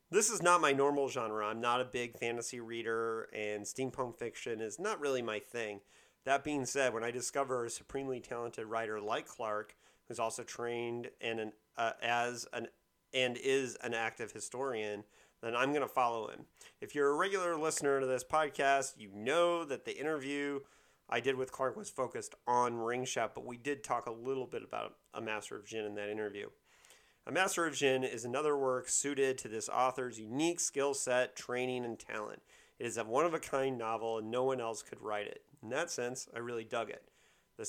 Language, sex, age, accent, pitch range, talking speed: English, male, 40-59, American, 115-140 Hz, 190 wpm